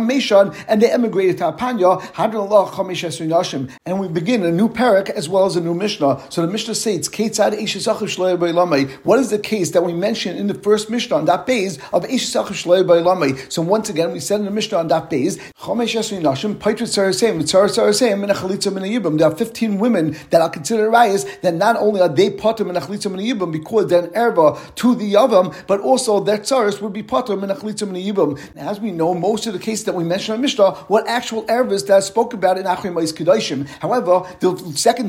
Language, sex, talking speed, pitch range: English, male, 190 wpm, 180-225 Hz